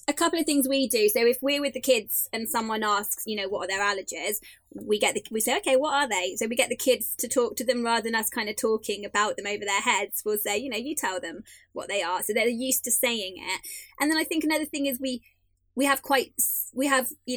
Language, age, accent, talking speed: English, 20-39, British, 275 wpm